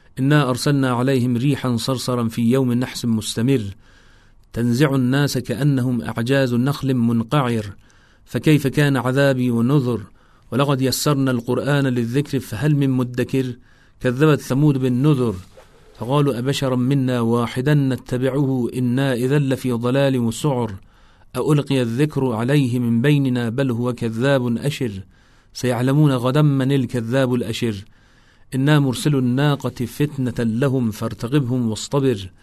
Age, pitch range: 40-59, 115-135 Hz